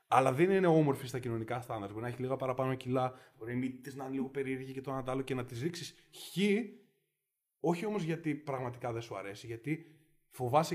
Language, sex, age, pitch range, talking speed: Greek, male, 20-39, 130-175 Hz, 200 wpm